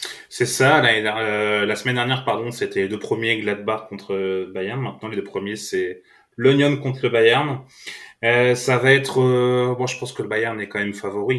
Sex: male